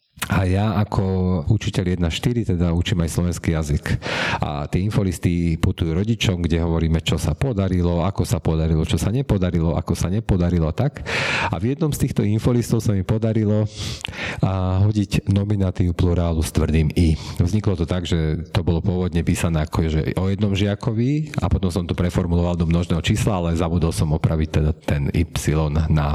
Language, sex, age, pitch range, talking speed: Slovak, male, 40-59, 85-110 Hz, 170 wpm